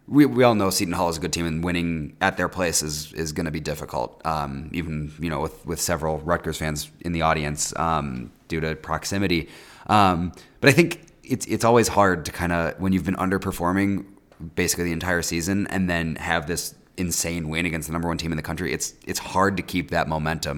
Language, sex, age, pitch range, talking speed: English, male, 30-49, 80-95 Hz, 225 wpm